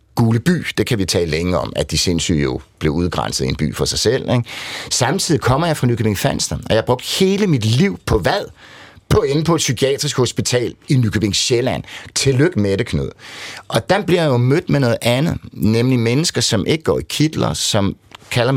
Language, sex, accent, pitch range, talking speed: Danish, male, native, 90-130 Hz, 205 wpm